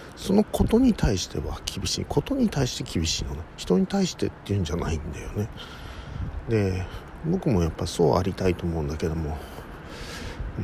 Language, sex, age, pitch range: Japanese, male, 50-69, 80-115 Hz